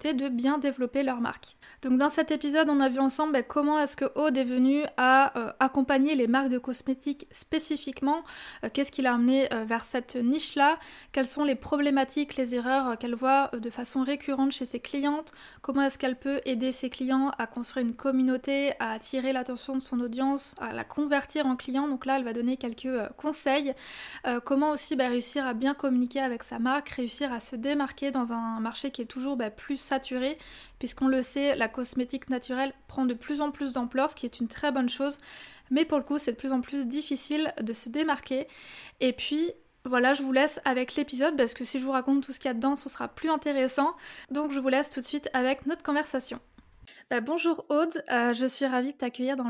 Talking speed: 220 wpm